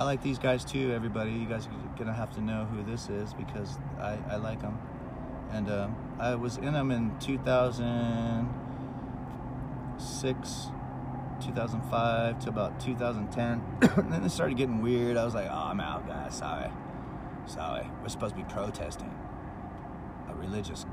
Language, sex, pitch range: English, male, 100-125 Hz